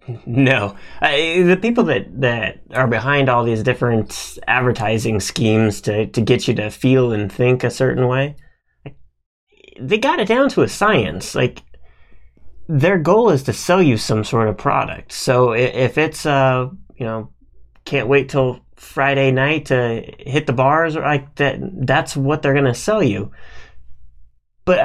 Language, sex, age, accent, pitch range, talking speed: English, male, 30-49, American, 115-150 Hz, 165 wpm